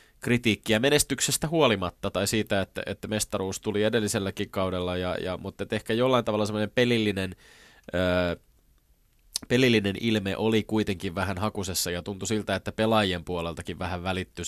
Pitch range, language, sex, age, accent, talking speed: 90-110 Hz, Finnish, male, 20-39, native, 145 wpm